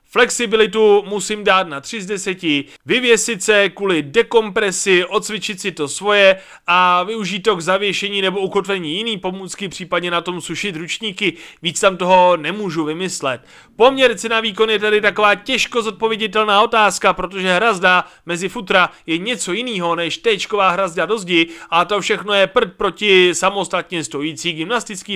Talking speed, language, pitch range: 155 wpm, Czech, 180-215 Hz